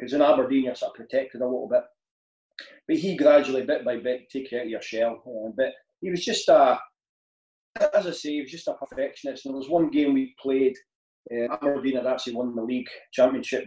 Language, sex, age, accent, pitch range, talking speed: English, male, 30-49, British, 120-140 Hz, 220 wpm